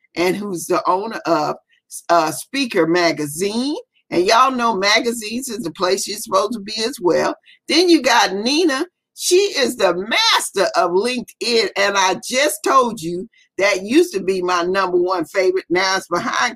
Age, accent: 40-59, American